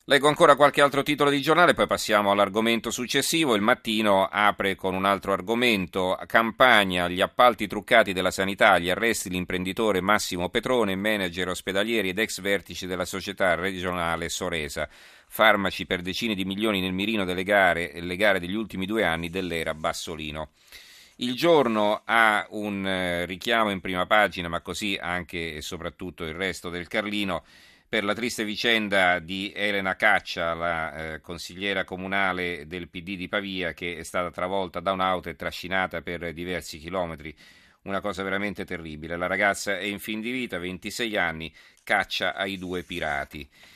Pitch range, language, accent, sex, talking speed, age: 90-105 Hz, Italian, native, male, 160 wpm, 40-59